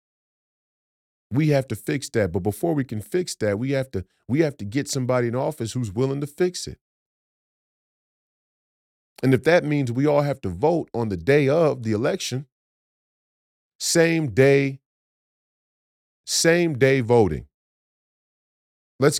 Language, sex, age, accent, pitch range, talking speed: English, male, 40-59, American, 105-145 Hz, 145 wpm